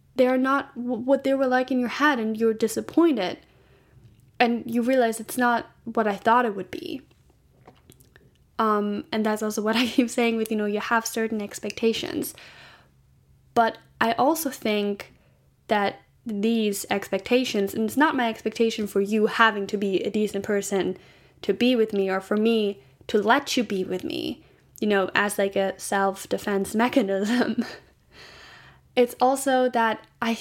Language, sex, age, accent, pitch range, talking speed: English, female, 10-29, American, 200-245 Hz, 165 wpm